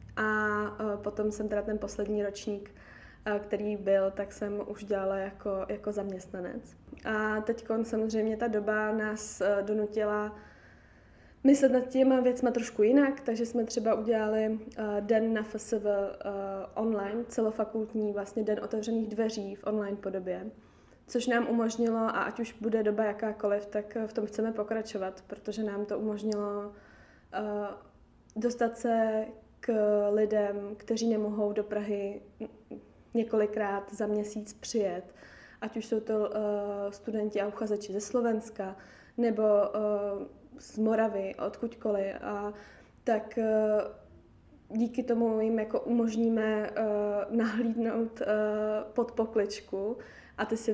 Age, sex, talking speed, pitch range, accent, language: 20-39, female, 125 wpm, 205-225 Hz, native, Czech